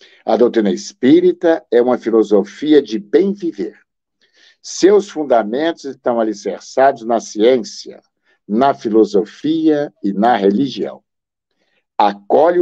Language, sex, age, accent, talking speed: Portuguese, male, 60-79, Brazilian, 100 wpm